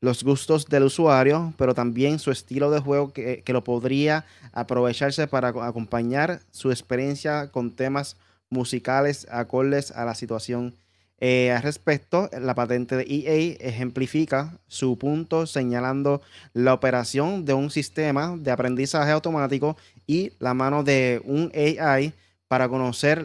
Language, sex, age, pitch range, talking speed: Spanish, male, 20-39, 125-150 Hz, 135 wpm